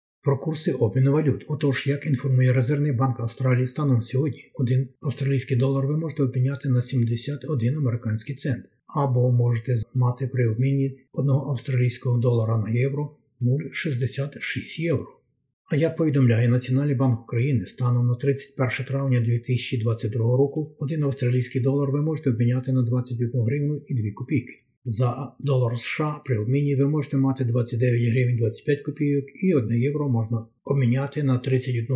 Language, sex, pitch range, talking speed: Ukrainian, male, 125-140 Hz, 145 wpm